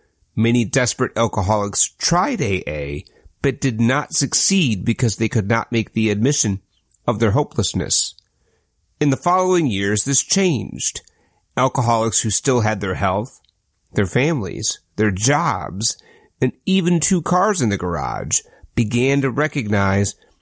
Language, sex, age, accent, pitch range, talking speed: English, male, 30-49, American, 105-145 Hz, 130 wpm